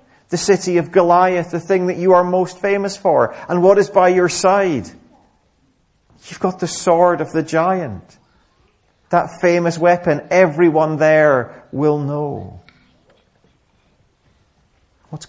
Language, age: English, 40-59